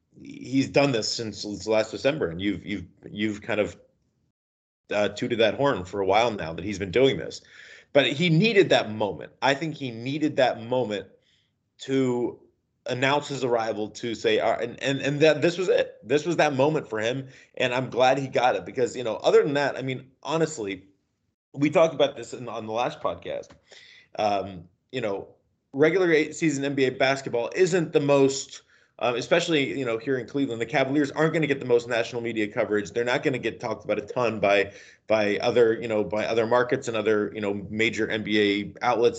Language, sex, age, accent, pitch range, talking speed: English, male, 30-49, American, 110-150 Hz, 205 wpm